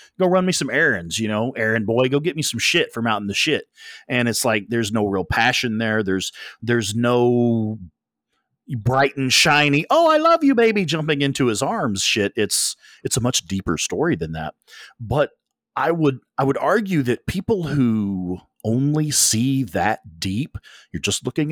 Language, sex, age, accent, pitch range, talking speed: English, male, 40-59, American, 100-140 Hz, 185 wpm